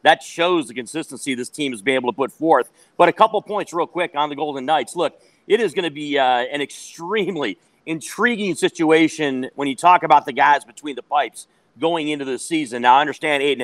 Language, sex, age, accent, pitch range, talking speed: English, male, 40-59, American, 130-160 Hz, 220 wpm